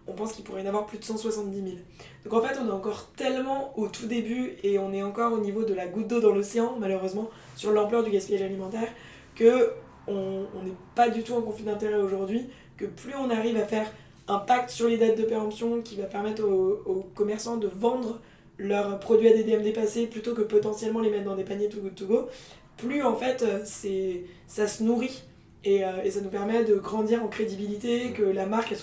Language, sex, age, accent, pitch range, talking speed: French, female, 20-39, French, 200-230 Hz, 225 wpm